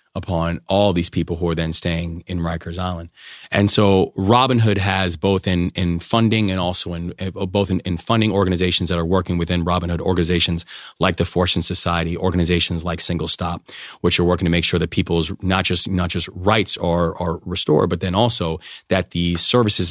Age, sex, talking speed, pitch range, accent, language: 30-49, male, 195 wpm, 90-100 Hz, American, English